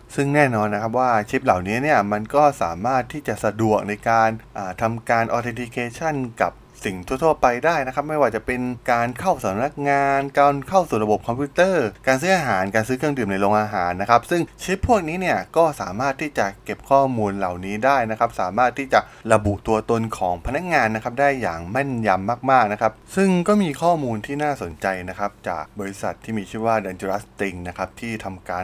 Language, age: Thai, 20-39